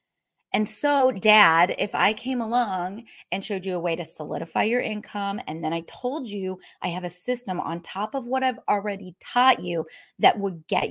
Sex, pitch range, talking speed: female, 170-230 Hz, 200 wpm